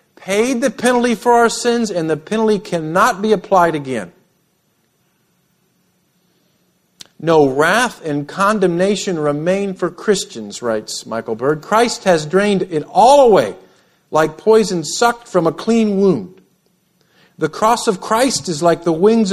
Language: English